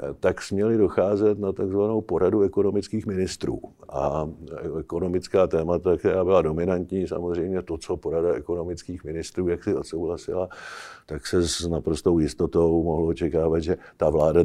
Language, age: Czech, 50-69